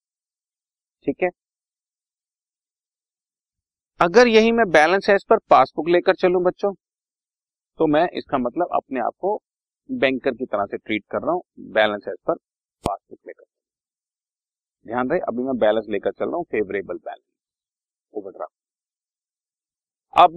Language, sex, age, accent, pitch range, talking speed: Hindi, male, 40-59, native, 155-210 Hz, 140 wpm